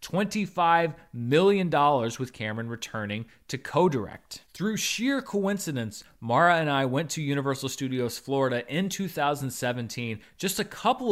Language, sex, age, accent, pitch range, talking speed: English, male, 30-49, American, 120-175 Hz, 120 wpm